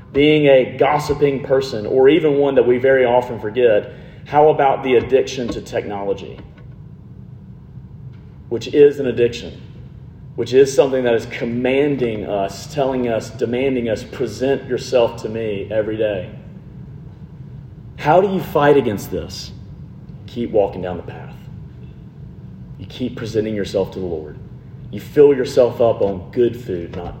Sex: male